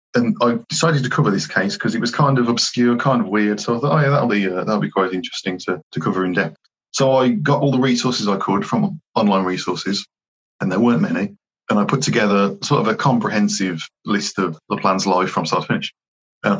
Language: English